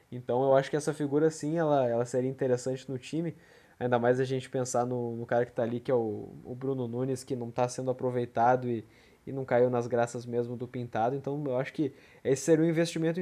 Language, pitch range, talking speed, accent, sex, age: Portuguese, 120-140 Hz, 235 wpm, Brazilian, male, 20-39